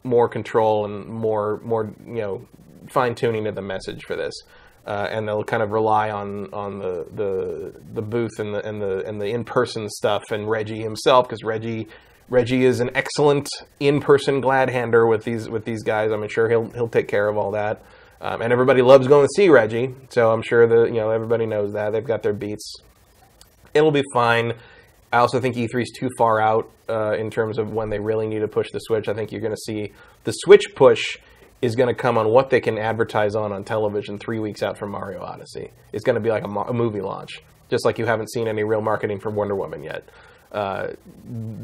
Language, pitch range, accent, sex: English, 105-130 Hz, American, male